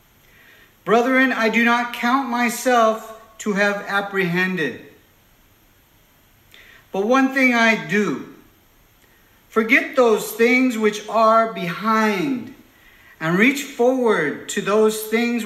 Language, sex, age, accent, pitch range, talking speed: English, male, 50-69, American, 165-230 Hz, 100 wpm